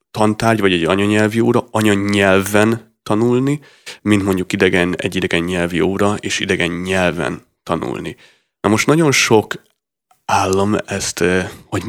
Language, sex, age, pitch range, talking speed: Hungarian, male, 30-49, 95-110 Hz, 125 wpm